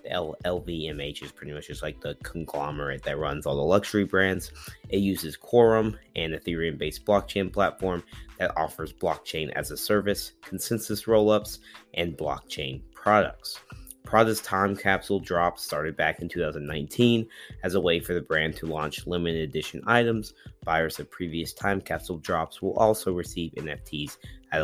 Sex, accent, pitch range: male, American, 80-100 Hz